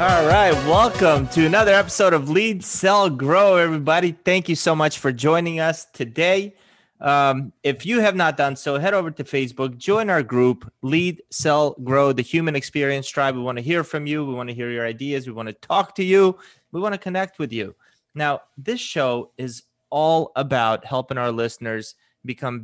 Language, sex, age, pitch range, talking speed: English, male, 20-39, 130-180 Hz, 195 wpm